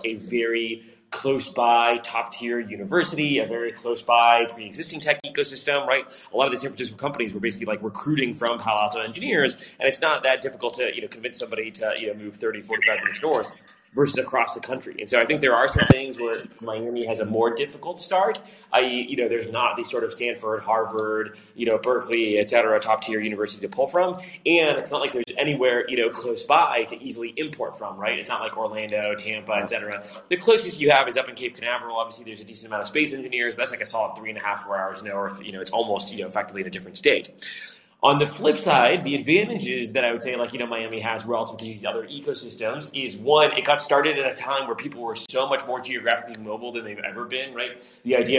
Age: 20-39